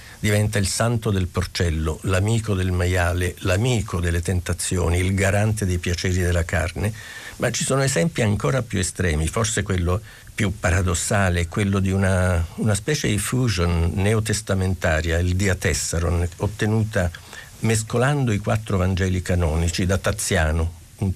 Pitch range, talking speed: 90-110 Hz, 135 wpm